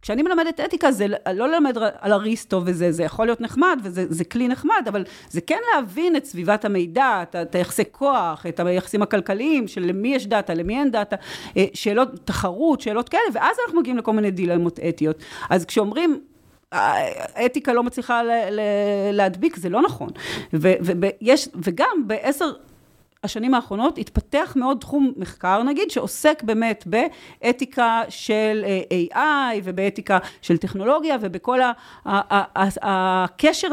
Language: Hebrew